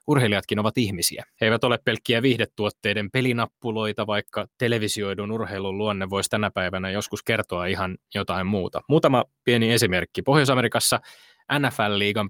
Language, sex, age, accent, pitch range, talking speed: Finnish, male, 20-39, native, 100-120 Hz, 125 wpm